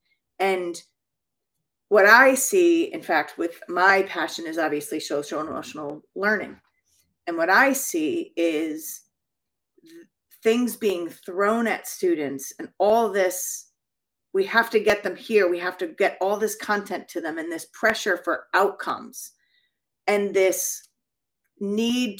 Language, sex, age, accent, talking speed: English, female, 30-49, American, 140 wpm